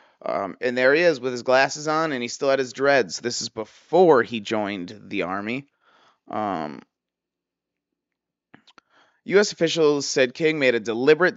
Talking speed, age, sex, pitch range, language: 160 wpm, 30-49, male, 120-155 Hz, English